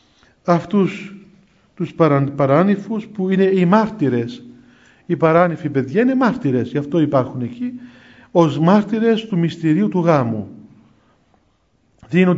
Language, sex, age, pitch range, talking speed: Greek, male, 50-69, 145-190 Hz, 115 wpm